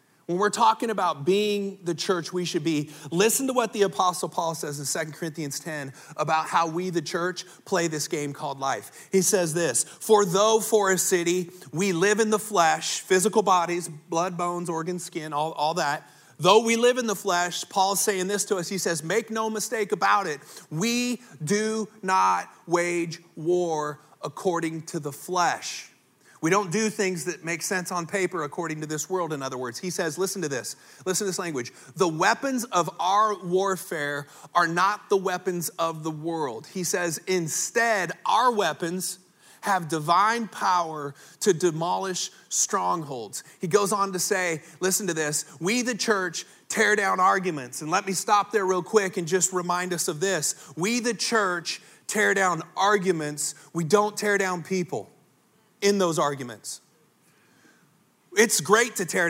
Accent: American